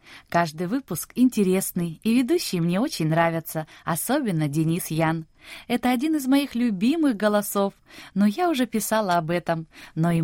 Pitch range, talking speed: 165-240 Hz, 145 wpm